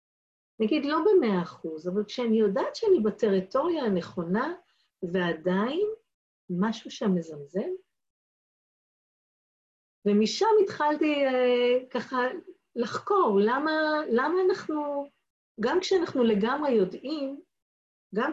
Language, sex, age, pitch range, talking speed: Hebrew, female, 50-69, 185-255 Hz, 90 wpm